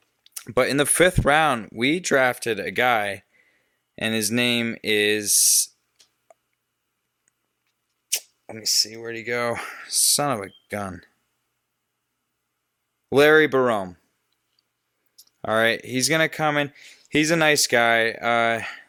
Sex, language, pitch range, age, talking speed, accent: male, English, 105-130 Hz, 20-39, 120 wpm, American